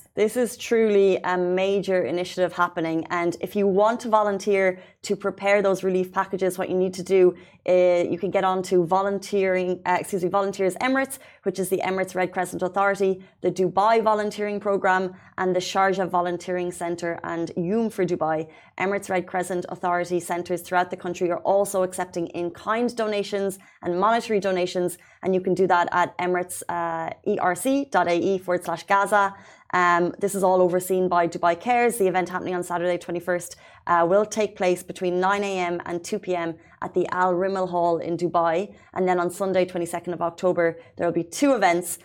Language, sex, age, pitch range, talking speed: Arabic, female, 30-49, 175-195 Hz, 175 wpm